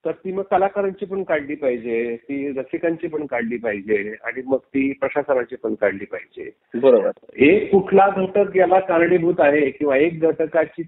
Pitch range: 145-190 Hz